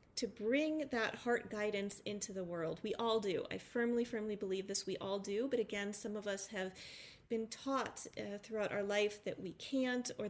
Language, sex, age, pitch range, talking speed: English, female, 40-59, 195-230 Hz, 205 wpm